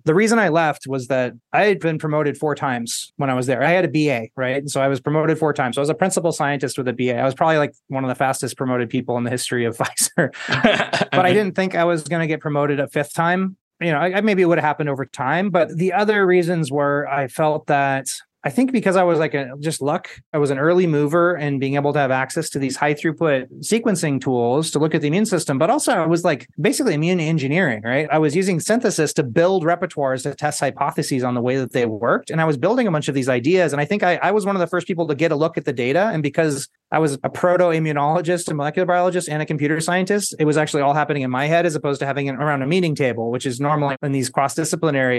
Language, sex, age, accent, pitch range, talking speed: English, male, 30-49, American, 135-170 Hz, 270 wpm